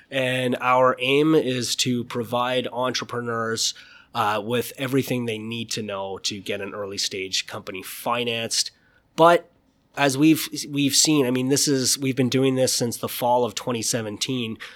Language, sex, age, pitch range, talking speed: English, male, 20-39, 115-135 Hz, 165 wpm